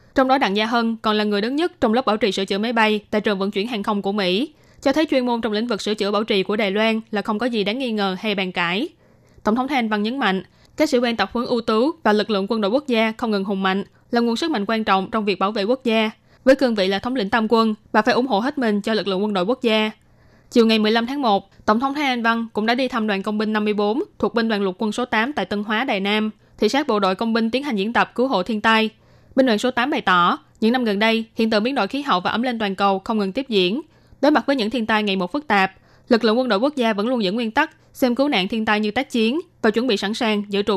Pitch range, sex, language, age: 205-245 Hz, female, Vietnamese, 20-39